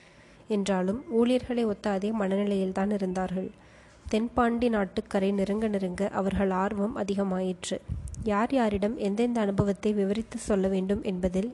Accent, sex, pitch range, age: native, female, 195-215 Hz, 20-39